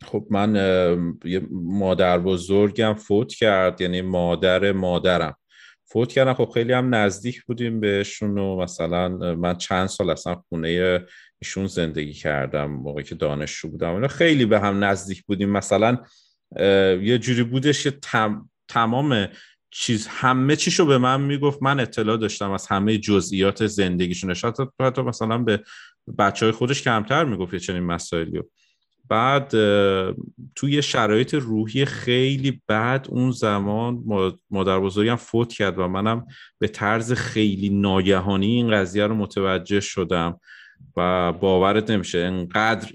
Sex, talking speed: male, 135 wpm